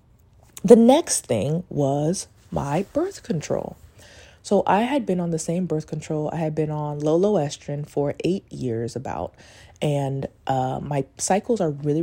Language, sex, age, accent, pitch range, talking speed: English, female, 20-39, American, 135-175 Hz, 160 wpm